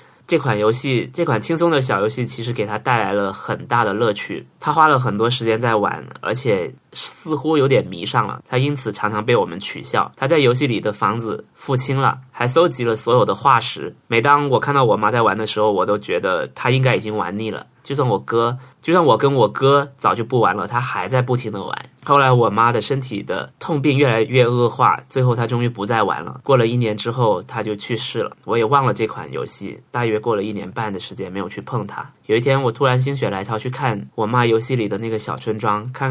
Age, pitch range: 20-39, 110-130 Hz